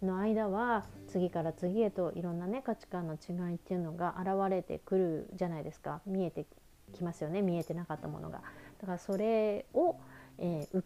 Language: Japanese